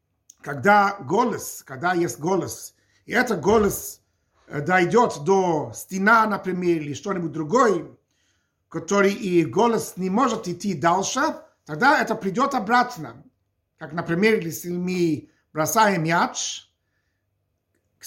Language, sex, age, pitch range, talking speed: Russian, male, 50-69, 150-235 Hz, 110 wpm